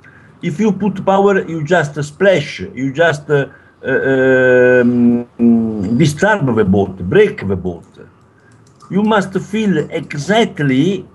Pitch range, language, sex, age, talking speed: 120-180 Hz, English, male, 60-79, 120 wpm